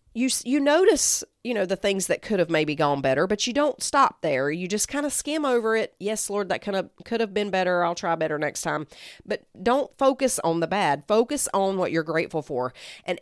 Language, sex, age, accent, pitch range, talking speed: English, female, 40-59, American, 175-255 Hz, 235 wpm